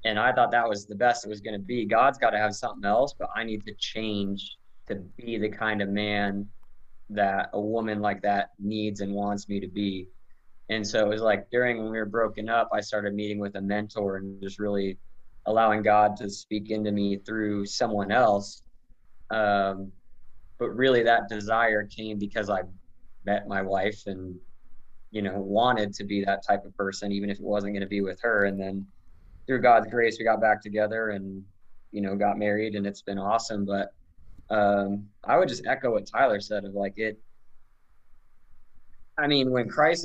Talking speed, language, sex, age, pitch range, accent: 200 wpm, English, male, 20-39, 100-110 Hz, American